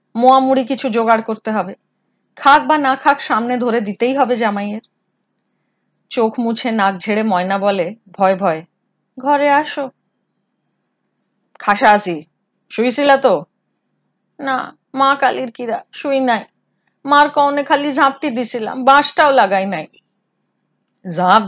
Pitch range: 200-265 Hz